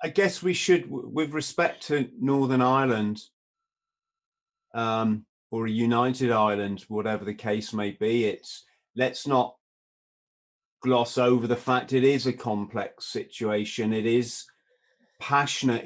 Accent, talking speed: British, 130 wpm